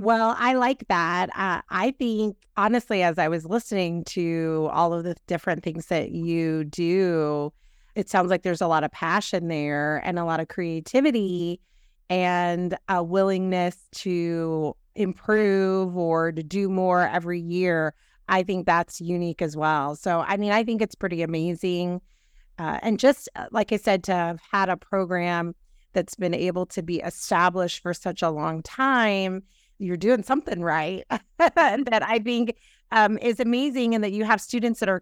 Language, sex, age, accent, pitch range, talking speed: English, female, 30-49, American, 170-205 Hz, 170 wpm